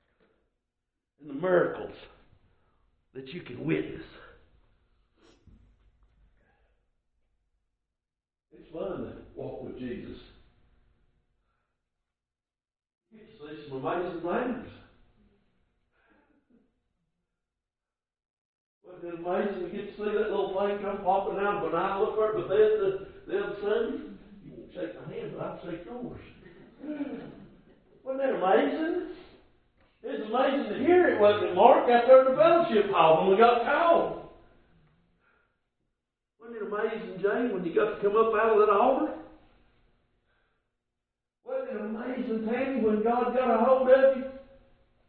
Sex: male